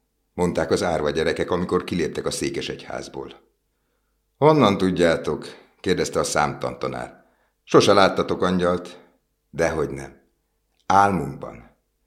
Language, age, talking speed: Hungarian, 60-79, 95 wpm